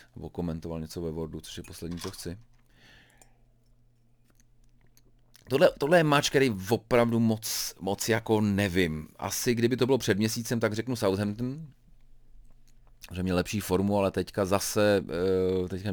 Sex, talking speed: male, 135 wpm